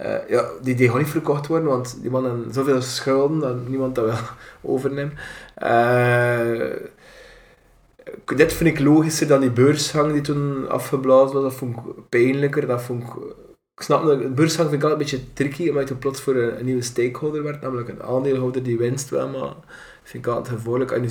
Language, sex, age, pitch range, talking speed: Dutch, male, 20-39, 120-135 Hz, 205 wpm